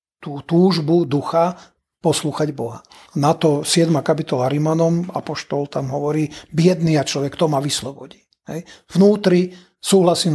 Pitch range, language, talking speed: 145-185 Hz, Slovak, 120 wpm